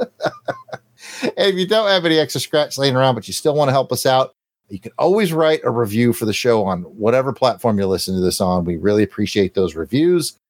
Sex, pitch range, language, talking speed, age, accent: male, 105-150 Hz, English, 225 wpm, 40-59, American